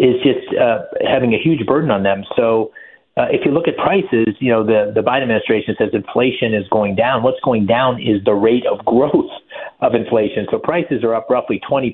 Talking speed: 210 wpm